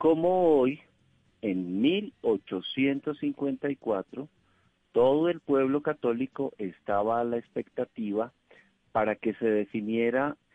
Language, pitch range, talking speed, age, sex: Spanish, 125-170 Hz, 90 wpm, 50-69, male